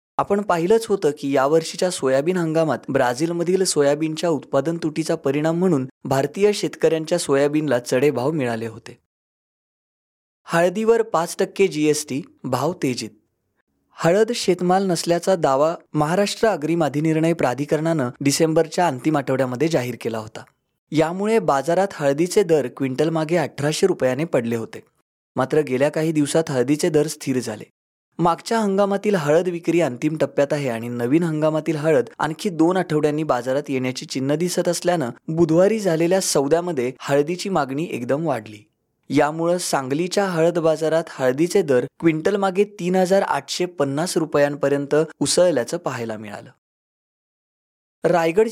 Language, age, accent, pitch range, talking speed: English, 20-39, Indian, 140-175 Hz, 100 wpm